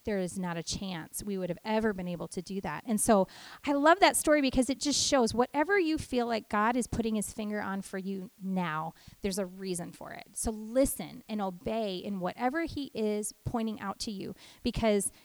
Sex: female